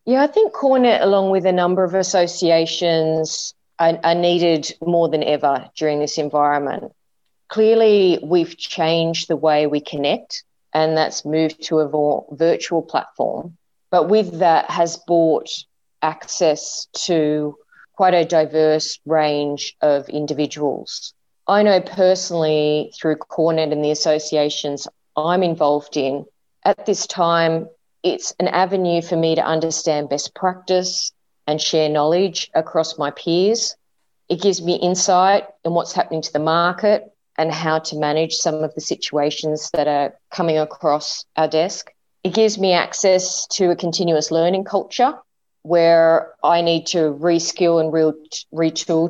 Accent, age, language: Australian, 30-49, English